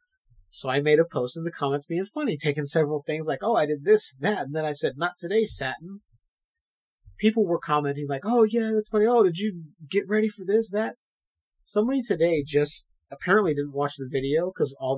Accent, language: American, English